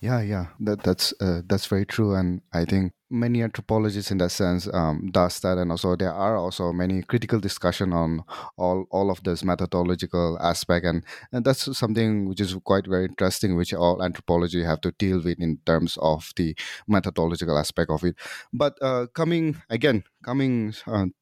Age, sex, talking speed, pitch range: 30-49, male, 180 wpm, 90-115 Hz